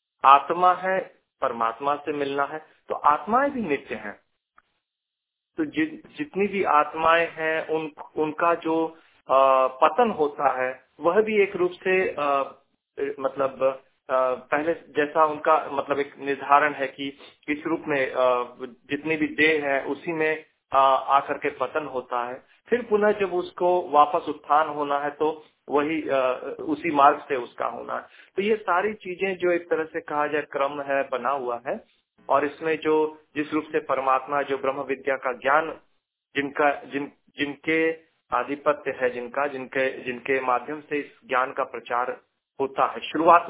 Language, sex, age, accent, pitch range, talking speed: Hindi, male, 40-59, native, 135-165 Hz, 155 wpm